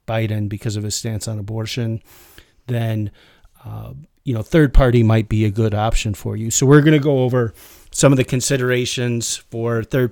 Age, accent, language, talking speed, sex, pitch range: 40-59, American, English, 190 wpm, male, 115-145 Hz